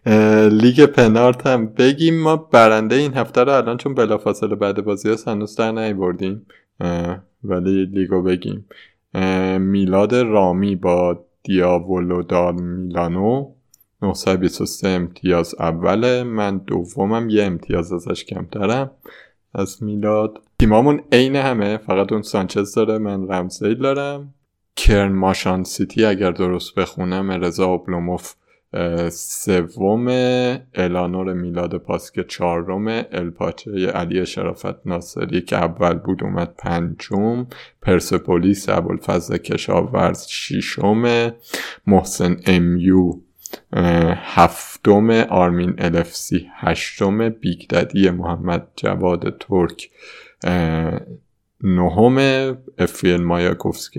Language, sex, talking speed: Persian, male, 100 wpm